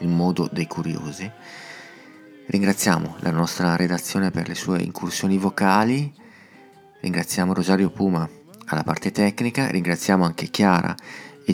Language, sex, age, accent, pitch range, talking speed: Italian, male, 30-49, native, 85-95 Hz, 120 wpm